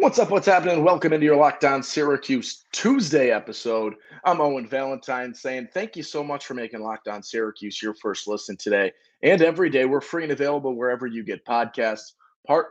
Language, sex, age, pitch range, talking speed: English, male, 30-49, 110-140 Hz, 185 wpm